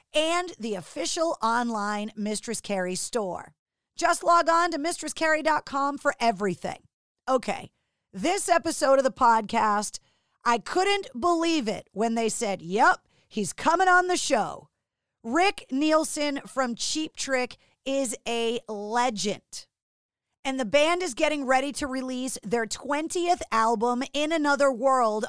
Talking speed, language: 130 wpm, English